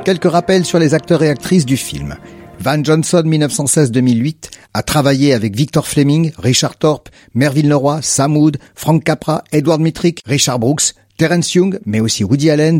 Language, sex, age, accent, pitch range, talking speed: French, male, 50-69, French, 110-155 Hz, 165 wpm